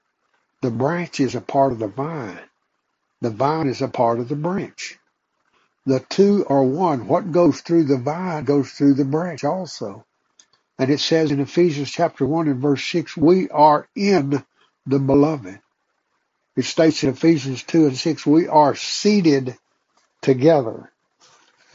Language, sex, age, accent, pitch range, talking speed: English, male, 60-79, American, 130-165 Hz, 155 wpm